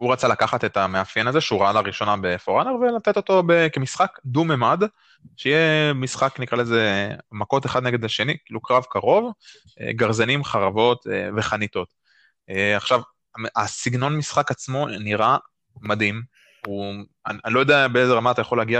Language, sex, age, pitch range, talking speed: Hebrew, male, 20-39, 105-135 Hz, 135 wpm